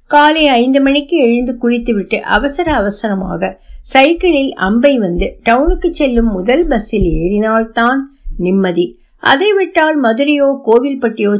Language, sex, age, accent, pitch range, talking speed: Tamil, female, 50-69, native, 205-290 Hz, 110 wpm